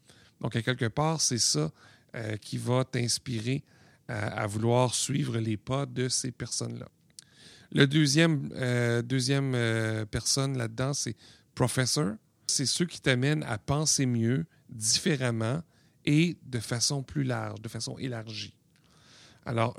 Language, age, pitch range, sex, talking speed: French, 40-59, 115-140 Hz, male, 130 wpm